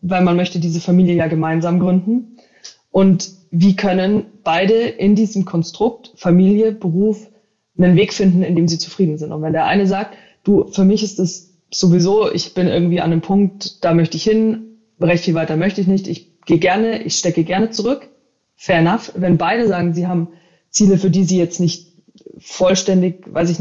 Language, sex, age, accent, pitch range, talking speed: German, female, 20-39, German, 175-215 Hz, 190 wpm